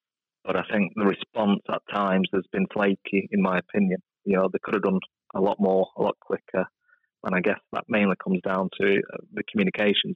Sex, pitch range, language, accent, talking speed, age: male, 95-100 Hz, English, British, 205 wpm, 30-49